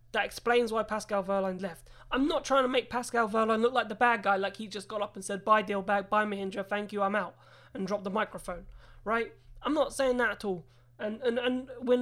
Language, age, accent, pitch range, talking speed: English, 20-39, British, 195-270 Hz, 245 wpm